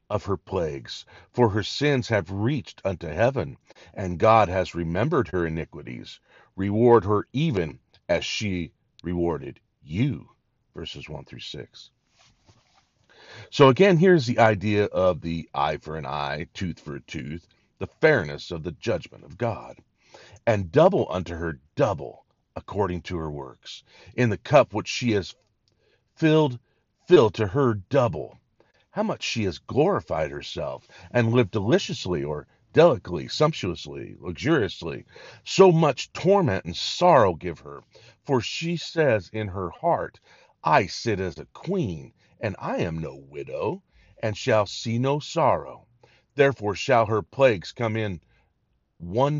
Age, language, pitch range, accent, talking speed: 50-69, English, 85-120 Hz, American, 145 wpm